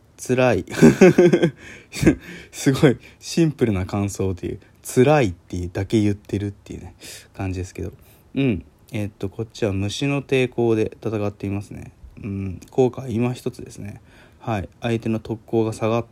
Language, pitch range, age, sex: Japanese, 100-140 Hz, 20-39, male